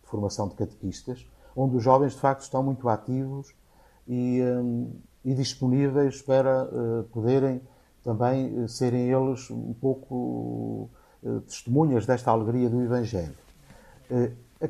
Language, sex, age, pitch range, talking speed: Portuguese, male, 50-69, 105-135 Hz, 110 wpm